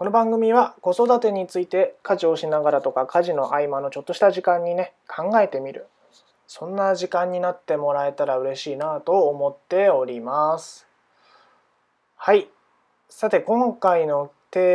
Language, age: Japanese, 20-39